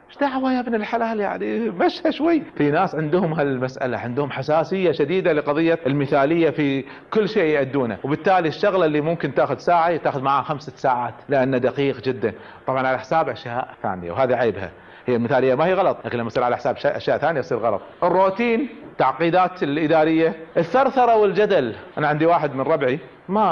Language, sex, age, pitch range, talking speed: Arabic, male, 40-59, 135-205 Hz, 165 wpm